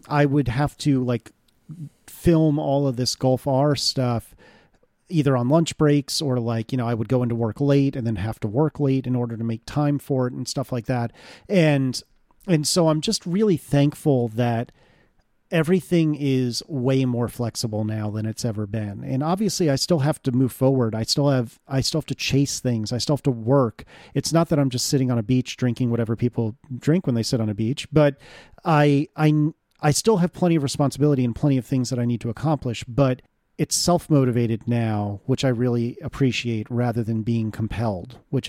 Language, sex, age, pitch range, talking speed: English, male, 40-59, 120-150 Hz, 205 wpm